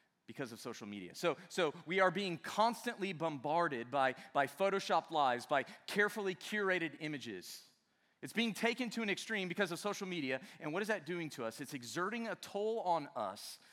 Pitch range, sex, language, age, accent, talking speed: 135-215 Hz, male, English, 30-49, American, 185 wpm